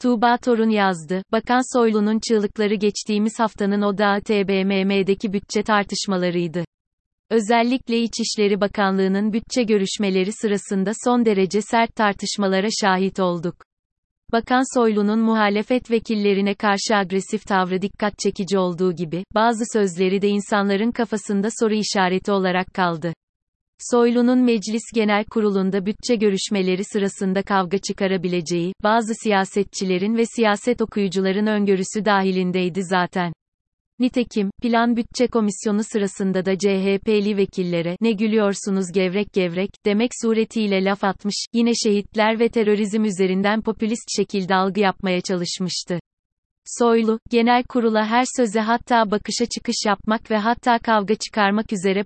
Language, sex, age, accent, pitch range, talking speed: Turkish, female, 30-49, native, 190-225 Hz, 115 wpm